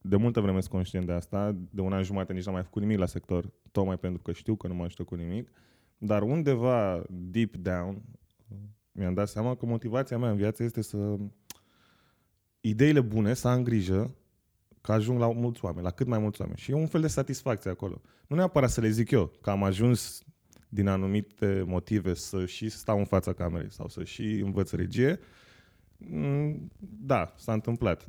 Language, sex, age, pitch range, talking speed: Romanian, male, 20-39, 95-120 Hz, 195 wpm